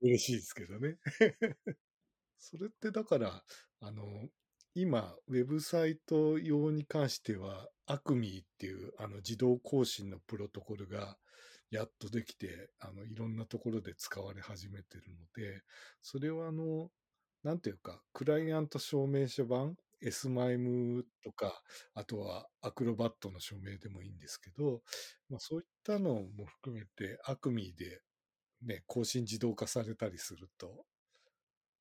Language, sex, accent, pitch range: Japanese, male, native, 105-140 Hz